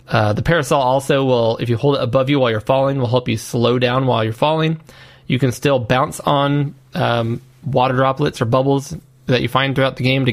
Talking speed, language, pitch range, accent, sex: 225 wpm, English, 120-140 Hz, American, male